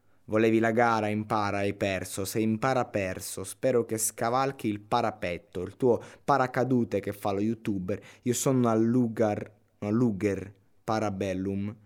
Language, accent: Italian, native